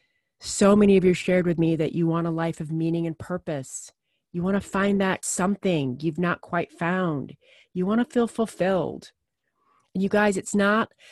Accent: American